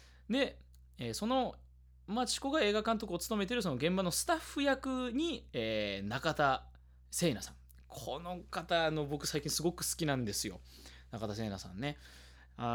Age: 20-39